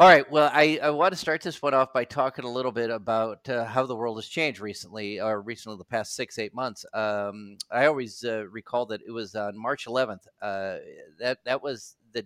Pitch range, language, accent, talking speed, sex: 110-140 Hz, English, American, 230 wpm, male